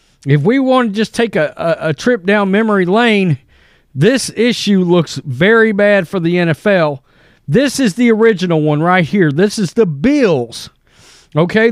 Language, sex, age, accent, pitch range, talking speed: English, male, 40-59, American, 160-230 Hz, 170 wpm